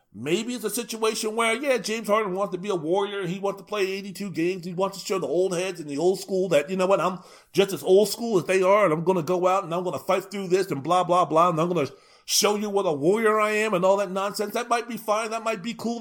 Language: English